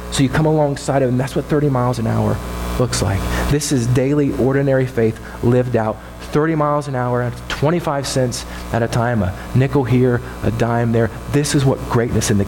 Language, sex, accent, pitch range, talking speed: English, male, American, 100-140 Hz, 205 wpm